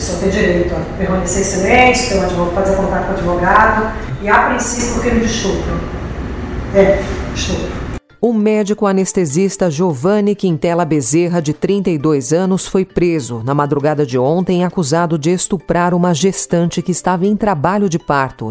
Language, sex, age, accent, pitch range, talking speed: Portuguese, female, 40-59, Brazilian, 150-200 Hz, 155 wpm